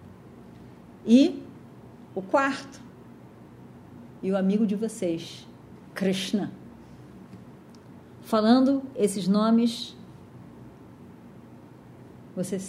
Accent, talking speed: Brazilian, 60 wpm